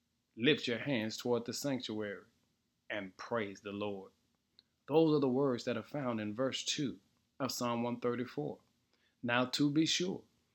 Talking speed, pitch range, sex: 155 wpm, 110-150 Hz, male